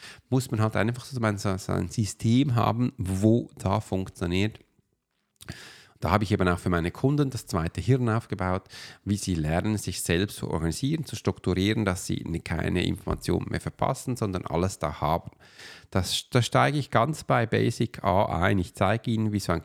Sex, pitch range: male, 100-125 Hz